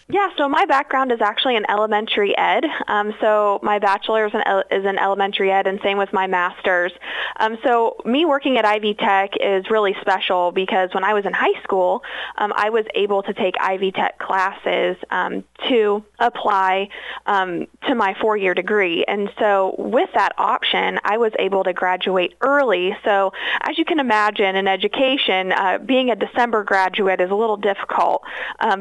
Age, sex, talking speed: 20-39, female, 175 wpm